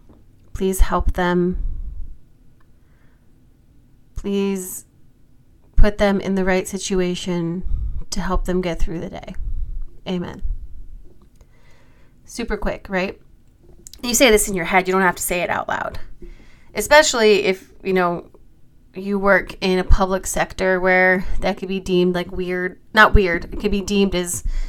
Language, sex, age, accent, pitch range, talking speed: English, female, 30-49, American, 175-195 Hz, 145 wpm